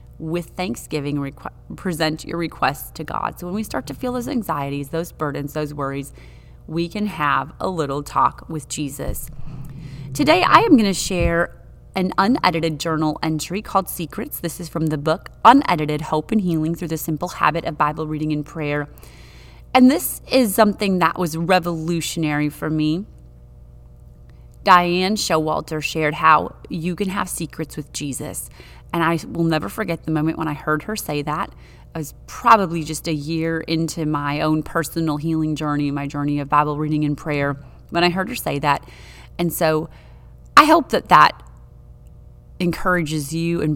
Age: 30-49